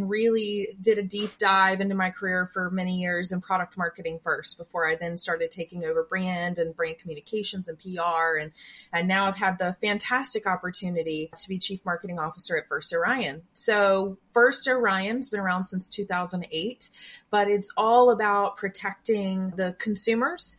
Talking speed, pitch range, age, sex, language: 165 wpm, 180-215 Hz, 20-39, female, English